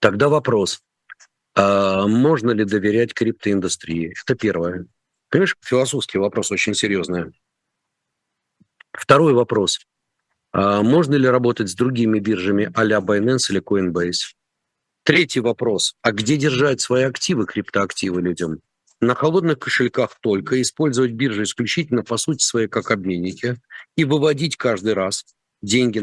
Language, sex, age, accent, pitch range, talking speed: Russian, male, 50-69, native, 100-135 Hz, 120 wpm